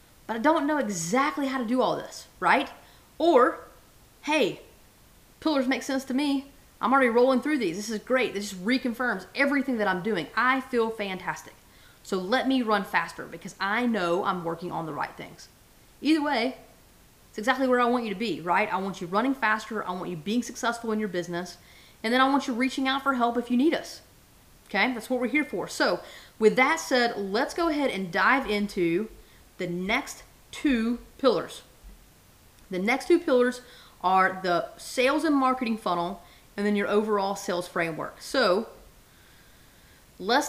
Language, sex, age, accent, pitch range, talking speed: English, female, 30-49, American, 195-260 Hz, 185 wpm